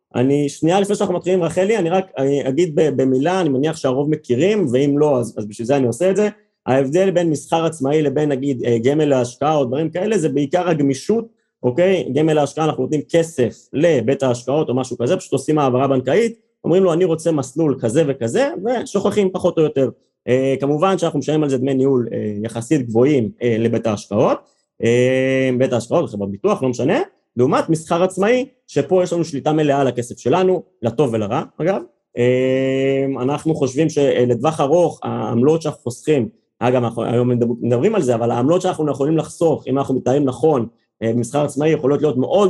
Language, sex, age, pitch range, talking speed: Hebrew, male, 30-49, 125-165 Hz, 170 wpm